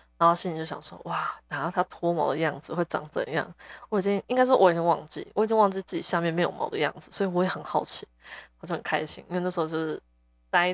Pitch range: 155-200 Hz